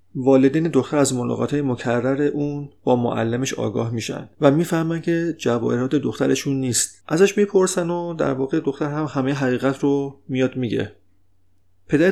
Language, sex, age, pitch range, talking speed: Persian, male, 40-59, 115-145 Hz, 145 wpm